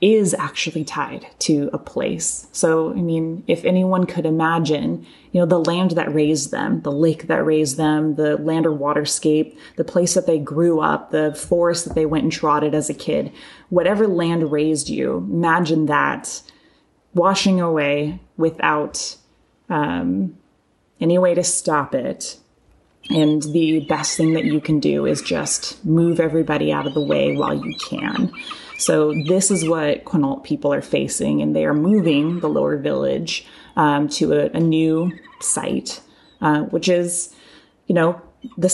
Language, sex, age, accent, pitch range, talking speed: English, female, 20-39, American, 150-175 Hz, 165 wpm